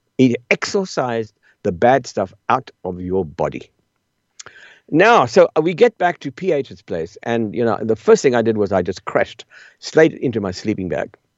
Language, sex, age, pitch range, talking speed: English, male, 60-79, 100-160 Hz, 180 wpm